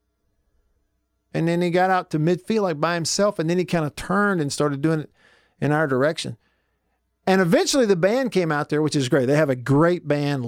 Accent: American